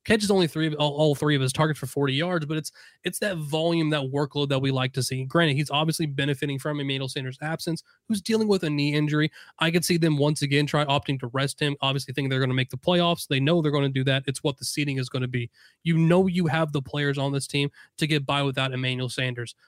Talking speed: 265 wpm